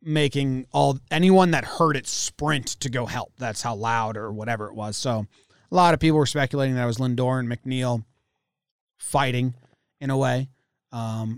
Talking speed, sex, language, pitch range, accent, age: 185 wpm, male, English, 120-155 Hz, American, 30-49